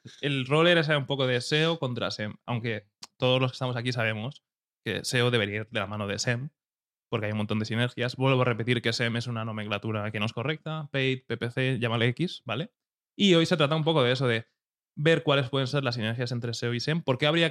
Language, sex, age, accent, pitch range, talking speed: Spanish, male, 20-39, Spanish, 120-140 Hz, 235 wpm